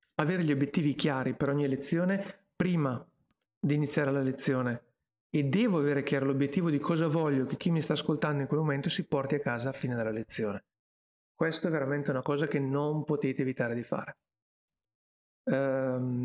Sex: male